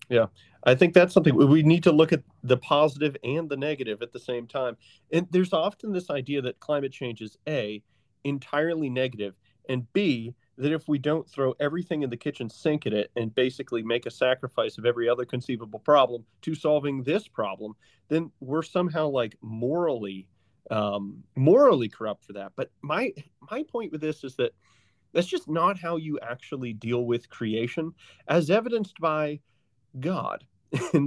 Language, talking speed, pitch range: English, 175 wpm, 120-165 Hz